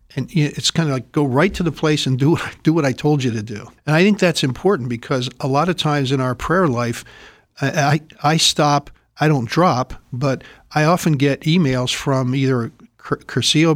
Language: English